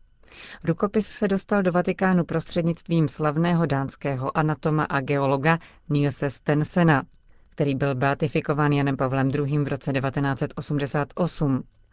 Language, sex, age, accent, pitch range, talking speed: Czech, female, 40-59, native, 140-165 Hz, 110 wpm